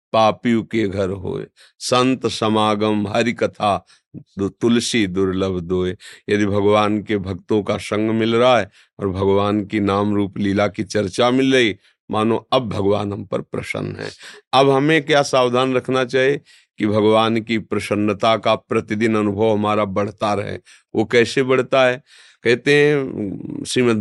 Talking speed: 150 wpm